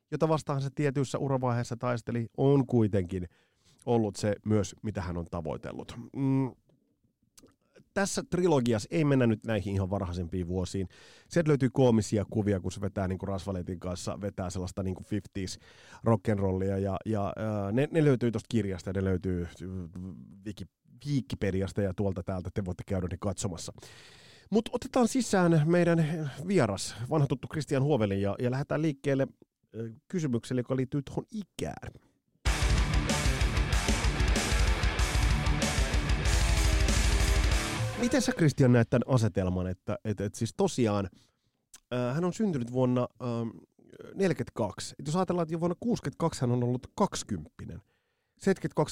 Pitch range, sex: 95-145 Hz, male